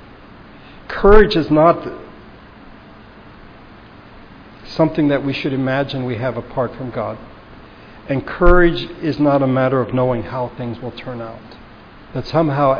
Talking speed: 130 wpm